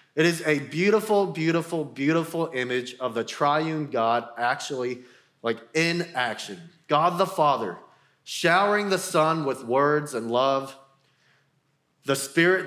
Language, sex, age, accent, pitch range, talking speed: English, male, 30-49, American, 135-175 Hz, 130 wpm